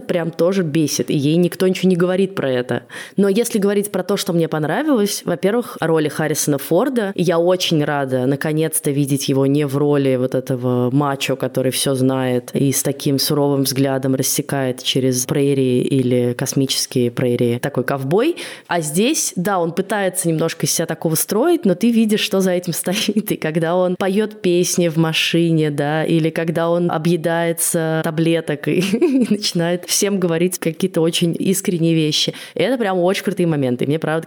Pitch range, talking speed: 145-190 Hz, 170 wpm